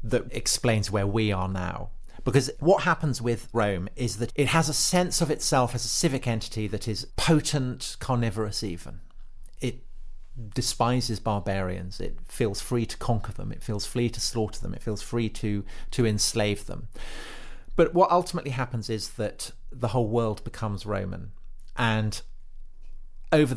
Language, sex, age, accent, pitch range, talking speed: English, male, 40-59, British, 105-125 Hz, 160 wpm